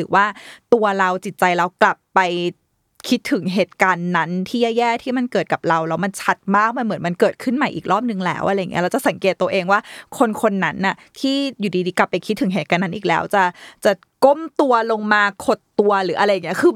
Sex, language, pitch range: female, Thai, 185-240 Hz